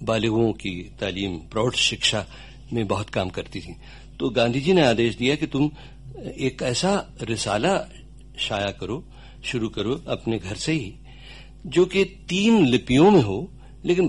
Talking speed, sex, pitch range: 85 wpm, male, 115-145 Hz